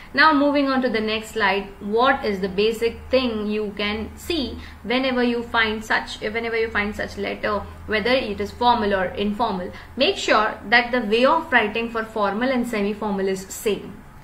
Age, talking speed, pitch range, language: 20-39, 185 wpm, 210-260 Hz, English